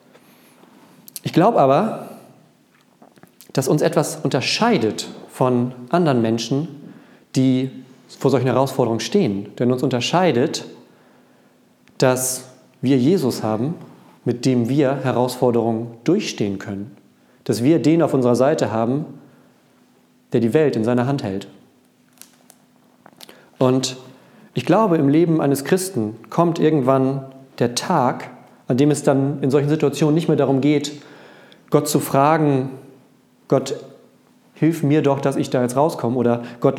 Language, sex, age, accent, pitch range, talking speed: German, male, 40-59, German, 125-150 Hz, 125 wpm